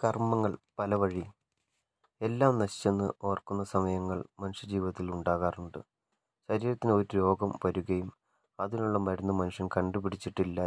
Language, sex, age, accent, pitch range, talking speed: Malayalam, male, 20-39, native, 95-100 Hz, 95 wpm